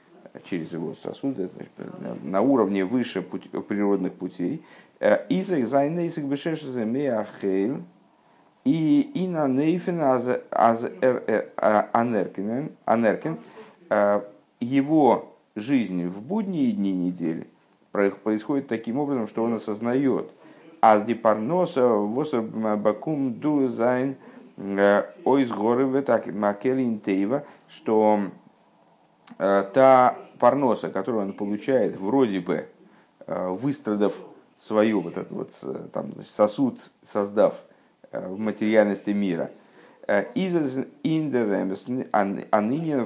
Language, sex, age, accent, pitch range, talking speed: Russian, male, 50-69, native, 100-140 Hz, 95 wpm